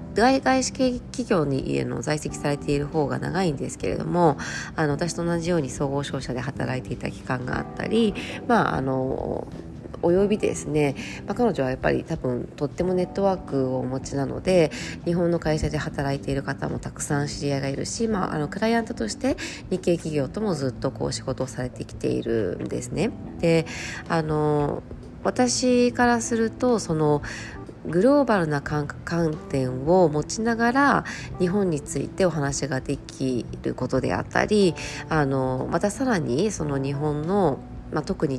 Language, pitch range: Japanese, 135-180 Hz